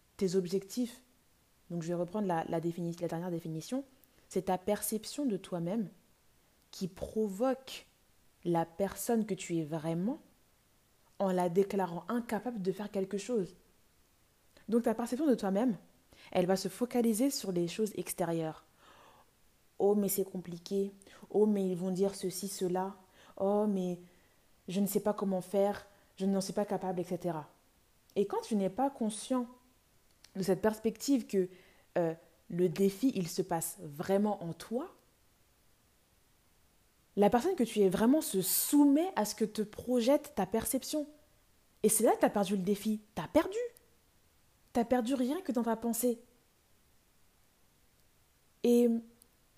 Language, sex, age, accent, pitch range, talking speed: French, female, 20-39, French, 185-240 Hz, 150 wpm